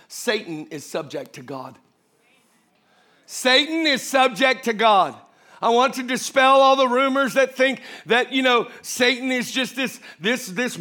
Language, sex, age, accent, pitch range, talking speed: English, male, 50-69, American, 210-270 Hz, 155 wpm